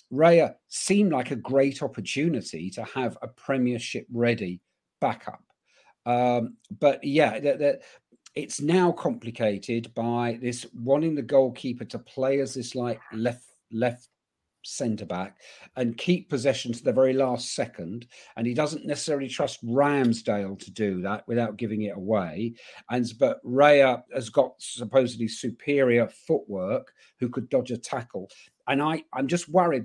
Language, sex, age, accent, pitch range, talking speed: English, male, 50-69, British, 115-135 Hz, 140 wpm